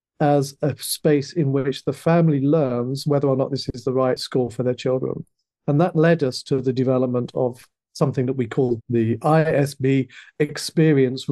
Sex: male